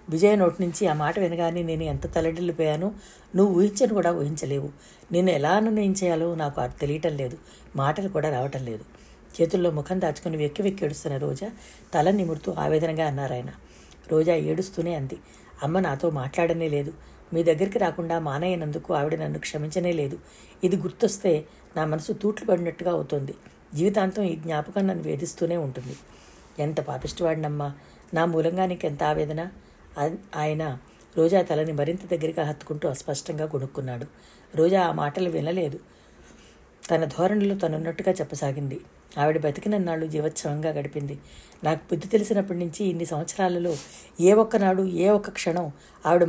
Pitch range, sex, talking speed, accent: 150-185 Hz, female, 125 wpm, native